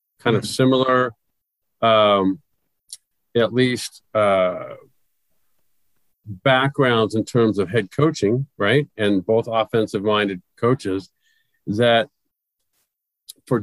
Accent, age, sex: American, 50-69, male